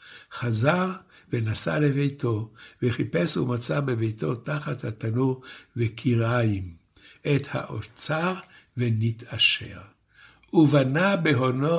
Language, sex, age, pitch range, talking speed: Hebrew, male, 60-79, 115-150 Hz, 70 wpm